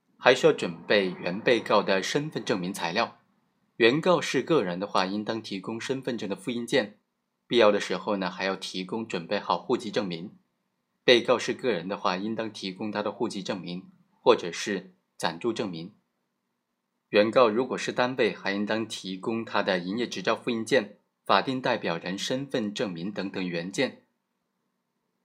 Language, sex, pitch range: Chinese, male, 100-135 Hz